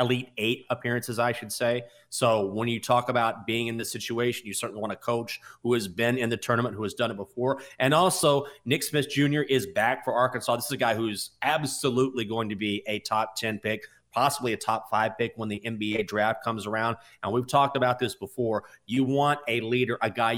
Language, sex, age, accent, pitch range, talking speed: English, male, 30-49, American, 115-150 Hz, 225 wpm